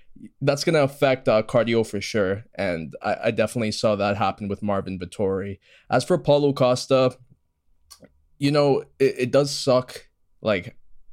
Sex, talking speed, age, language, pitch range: male, 150 wpm, 20-39, English, 105-125 Hz